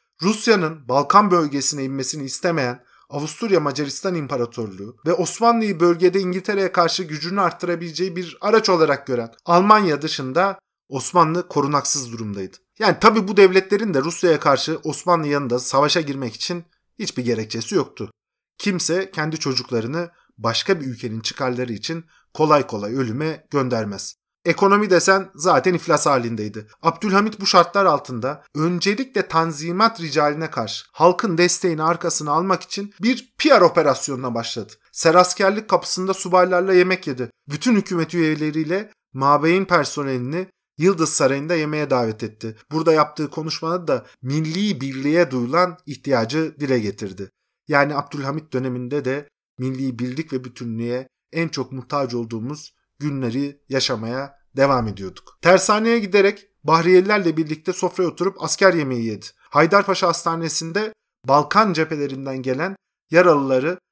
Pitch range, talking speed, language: 135-180 Hz, 120 wpm, Turkish